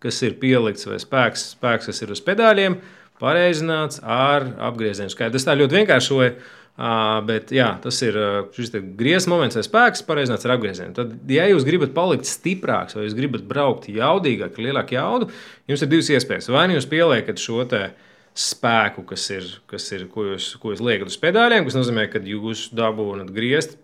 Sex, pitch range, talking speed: male, 110-140 Hz, 175 wpm